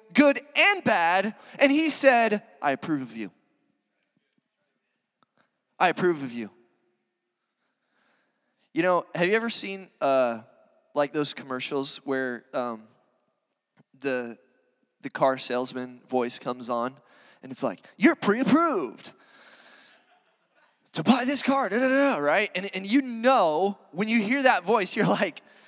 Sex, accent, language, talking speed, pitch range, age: male, American, English, 125 wpm, 170-255 Hz, 20-39